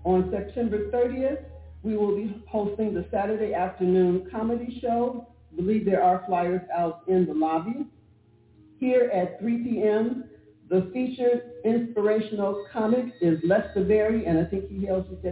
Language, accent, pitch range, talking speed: English, American, 165-220 Hz, 145 wpm